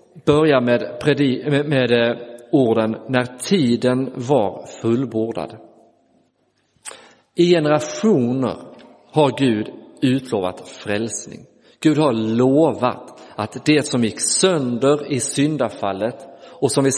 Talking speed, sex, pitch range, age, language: 90 wpm, male, 110-135 Hz, 40-59, Swedish